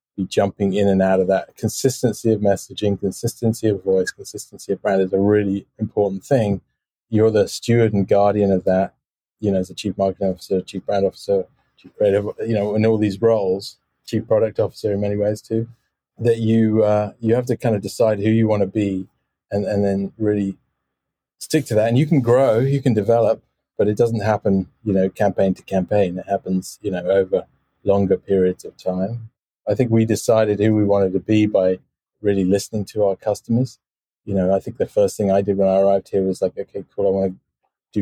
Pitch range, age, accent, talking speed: 95-115 Hz, 20-39, British, 210 wpm